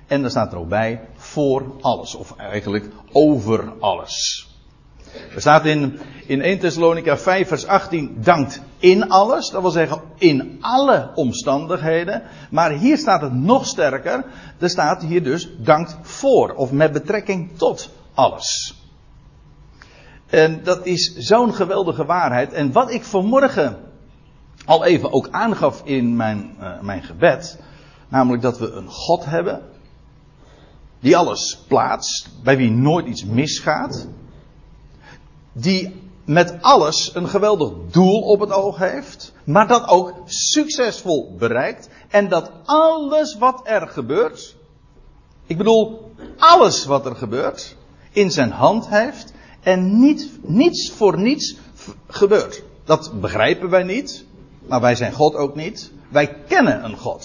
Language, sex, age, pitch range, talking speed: Dutch, male, 60-79, 140-205 Hz, 135 wpm